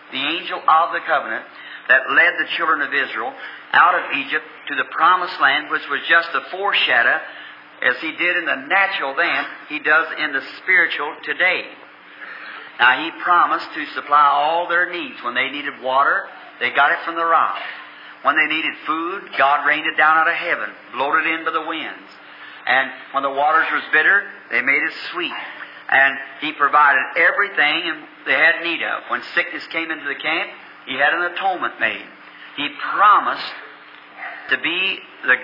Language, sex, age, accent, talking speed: English, male, 50-69, American, 175 wpm